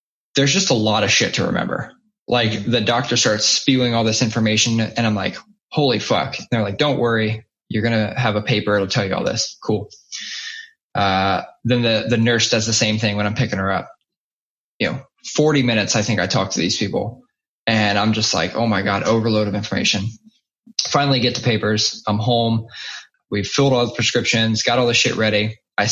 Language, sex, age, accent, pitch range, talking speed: English, male, 10-29, American, 110-130 Hz, 210 wpm